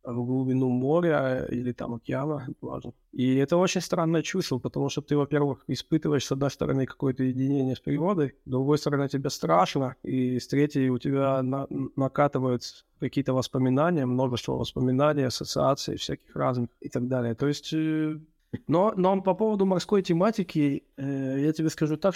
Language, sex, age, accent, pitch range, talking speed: Ukrainian, male, 20-39, native, 130-150 Hz, 160 wpm